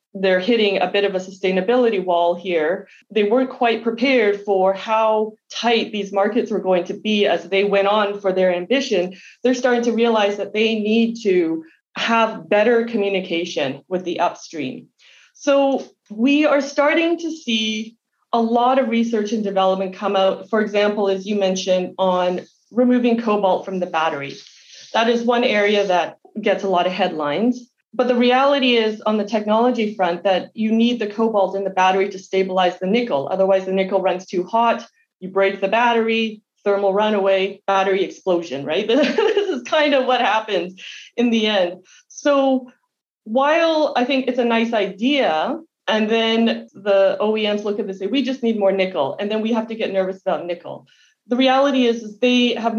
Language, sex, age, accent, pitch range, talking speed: English, female, 30-49, American, 190-240 Hz, 180 wpm